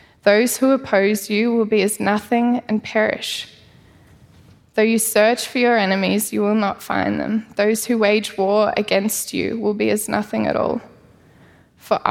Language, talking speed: English, 170 wpm